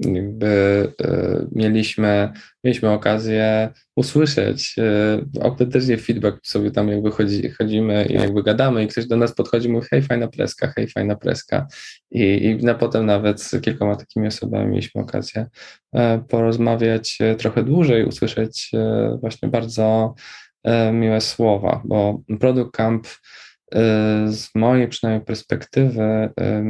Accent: native